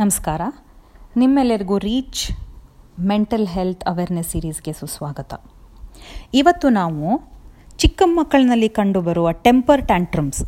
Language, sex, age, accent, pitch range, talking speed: Telugu, female, 30-49, native, 165-240 Hz, 80 wpm